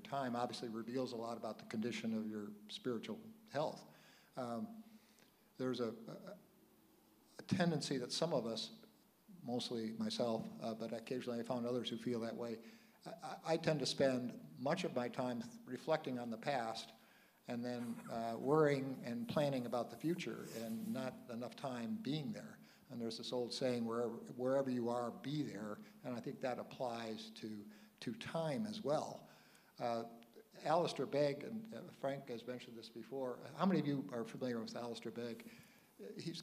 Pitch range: 120-155 Hz